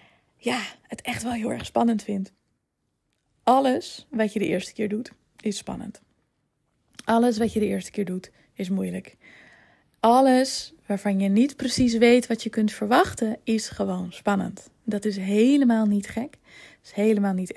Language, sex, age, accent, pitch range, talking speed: Dutch, female, 20-39, Dutch, 195-245 Hz, 165 wpm